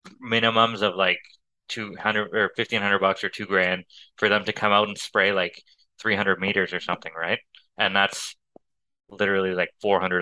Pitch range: 95-110 Hz